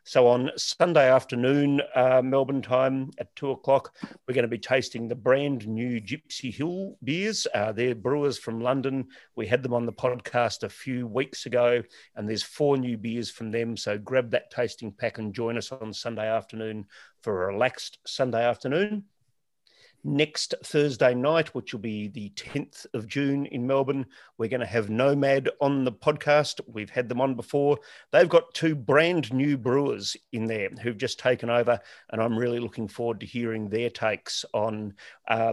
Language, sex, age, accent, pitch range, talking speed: English, male, 40-59, Australian, 115-135 Hz, 180 wpm